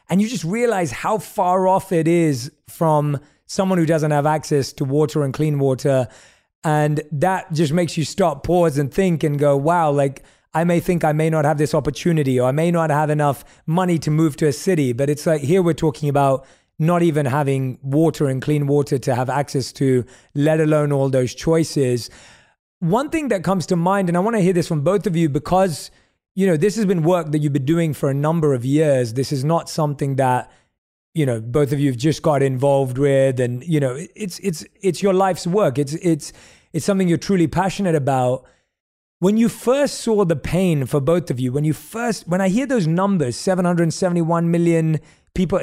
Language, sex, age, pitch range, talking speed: English, male, 20-39, 145-180 Hz, 215 wpm